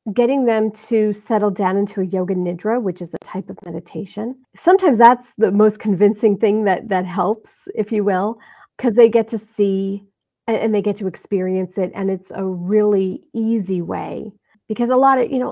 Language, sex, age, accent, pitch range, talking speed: English, female, 40-59, American, 200-250 Hz, 195 wpm